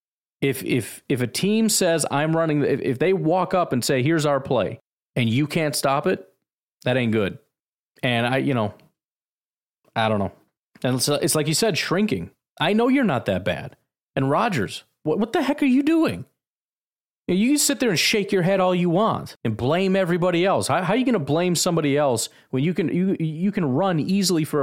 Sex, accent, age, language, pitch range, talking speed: male, American, 30-49, English, 120-185 Hz, 210 wpm